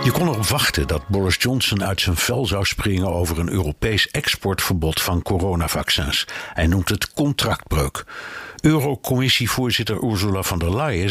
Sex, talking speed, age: male, 145 wpm, 60-79